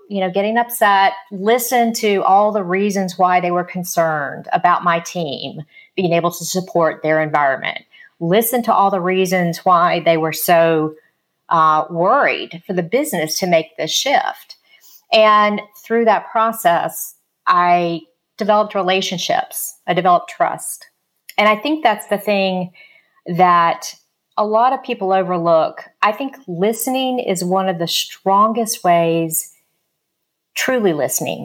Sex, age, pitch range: female, 40-59, 170-210 Hz